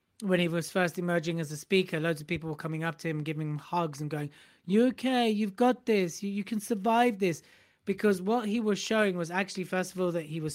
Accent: British